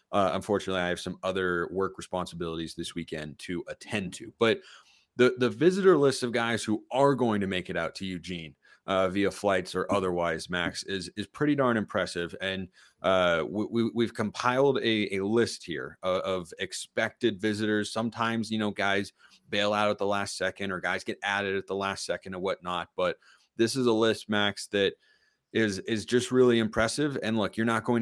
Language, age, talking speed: English, 30-49, 195 wpm